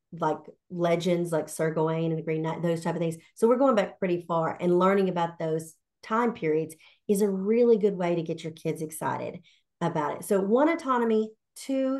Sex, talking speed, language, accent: female, 205 wpm, English, American